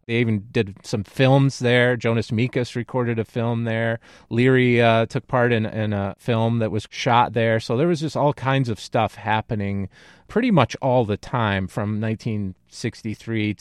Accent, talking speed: American, 175 wpm